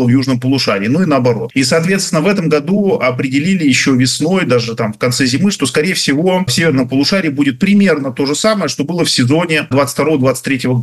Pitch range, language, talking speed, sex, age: 130-175 Hz, Russian, 195 wpm, male, 40-59